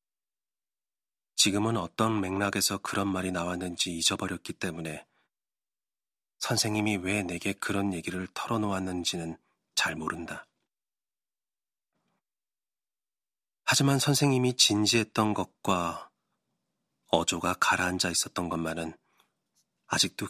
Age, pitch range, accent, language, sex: 40-59, 90-130 Hz, native, Korean, male